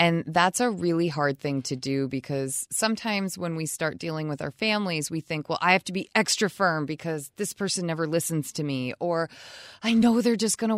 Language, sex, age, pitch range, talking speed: English, female, 20-39, 155-205 Hz, 225 wpm